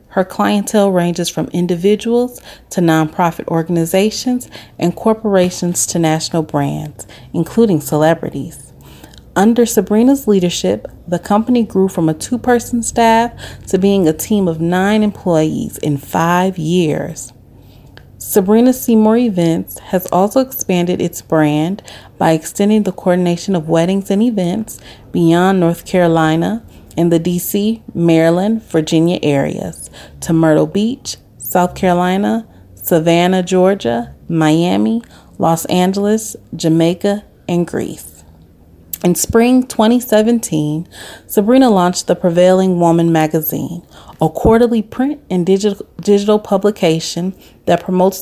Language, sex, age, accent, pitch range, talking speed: English, female, 30-49, American, 165-210 Hz, 115 wpm